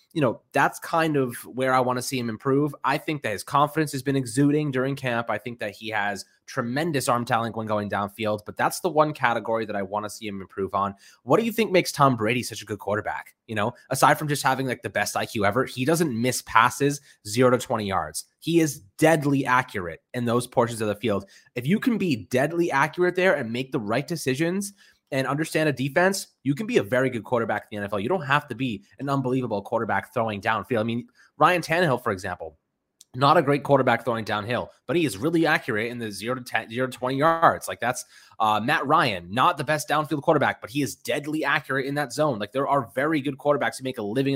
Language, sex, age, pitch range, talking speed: English, male, 20-39, 115-155 Hz, 240 wpm